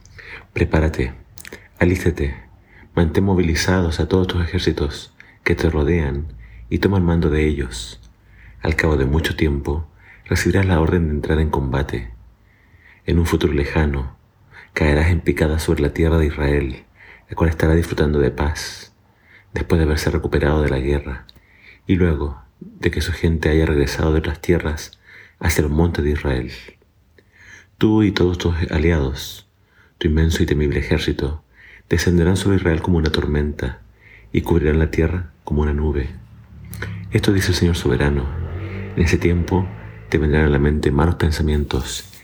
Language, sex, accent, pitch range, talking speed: Spanish, male, Argentinian, 75-90 Hz, 155 wpm